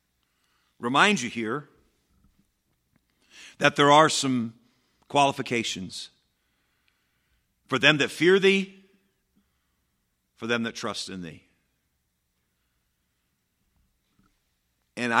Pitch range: 90-120 Hz